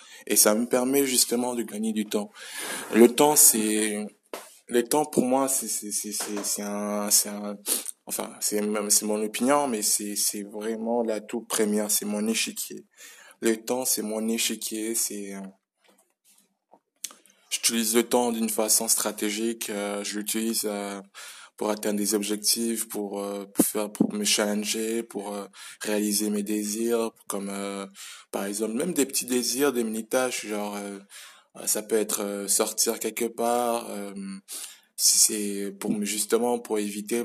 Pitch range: 105-115 Hz